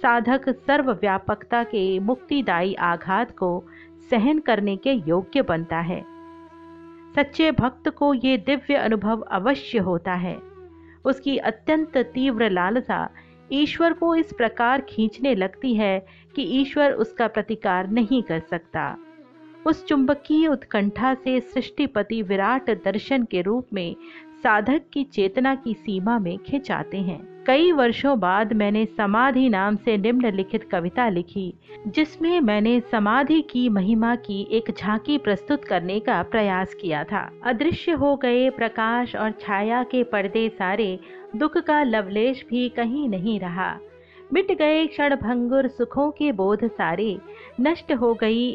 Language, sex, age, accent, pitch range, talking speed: Hindi, female, 50-69, native, 205-280 Hz, 135 wpm